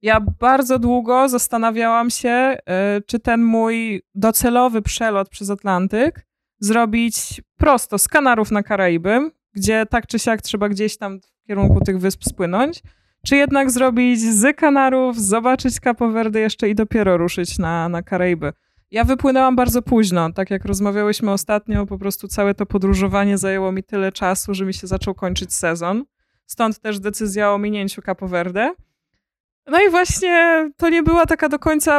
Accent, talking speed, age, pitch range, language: native, 160 wpm, 20-39, 195-250 Hz, Polish